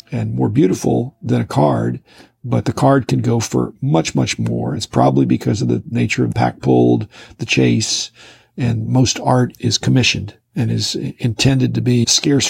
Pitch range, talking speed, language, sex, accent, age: 105-125 Hz, 180 wpm, English, male, American, 50-69